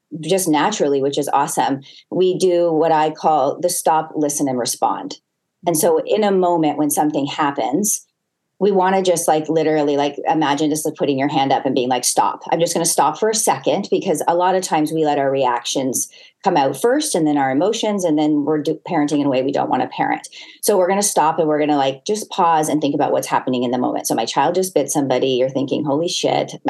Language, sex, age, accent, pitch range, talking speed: English, female, 30-49, American, 155-195 Hz, 240 wpm